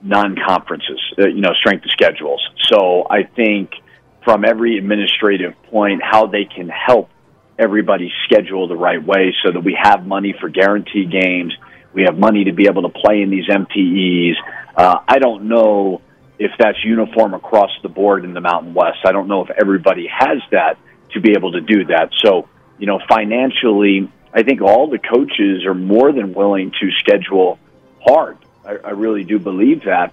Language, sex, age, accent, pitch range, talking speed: English, male, 40-59, American, 95-110 Hz, 175 wpm